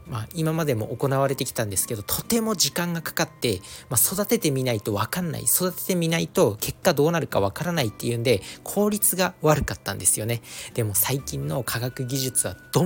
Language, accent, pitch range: Japanese, native, 110-175 Hz